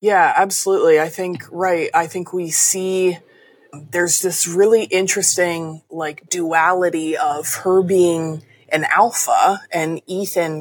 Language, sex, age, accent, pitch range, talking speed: English, female, 20-39, American, 155-180 Hz, 125 wpm